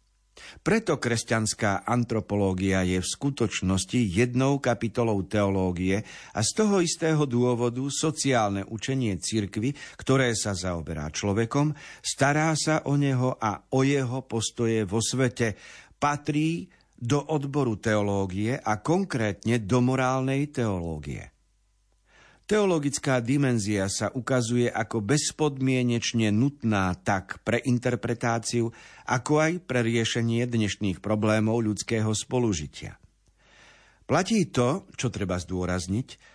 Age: 50-69